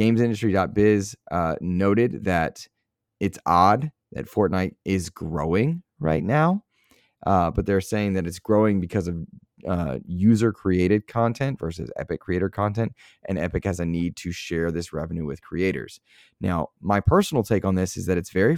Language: English